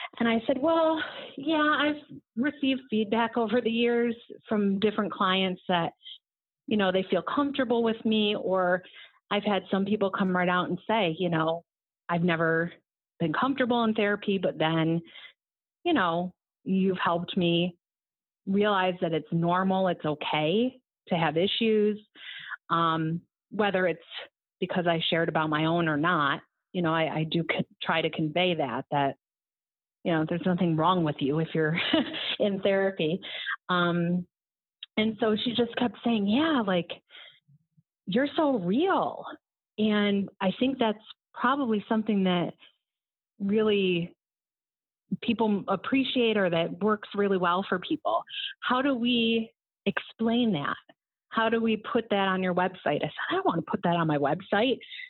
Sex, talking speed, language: female, 155 wpm, English